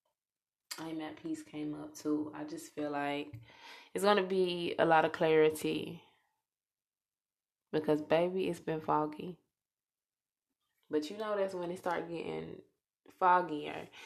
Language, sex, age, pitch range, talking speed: English, female, 20-39, 150-185 Hz, 130 wpm